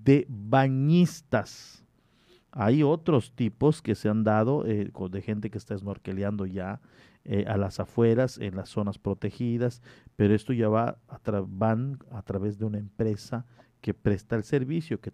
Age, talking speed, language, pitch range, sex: 50-69, 150 wpm, Spanish, 100-130 Hz, male